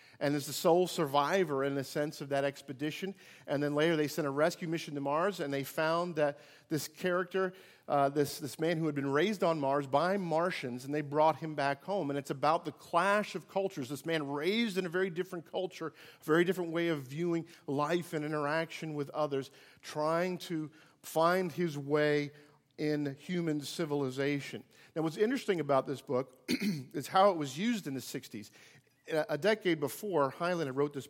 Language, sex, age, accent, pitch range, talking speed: English, male, 50-69, American, 140-175 Hz, 190 wpm